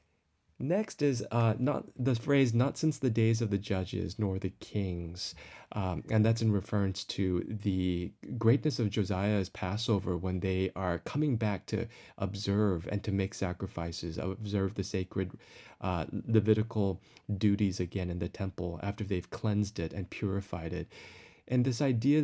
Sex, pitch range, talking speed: male, 95-115 Hz, 155 wpm